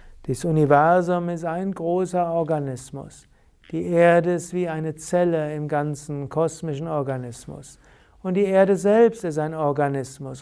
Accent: German